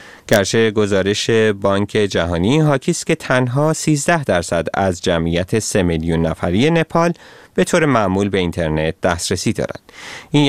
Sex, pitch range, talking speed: male, 90-140 Hz, 130 wpm